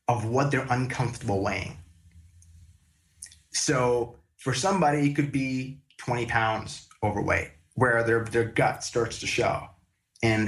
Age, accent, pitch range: 20-39, American, 105-140 Hz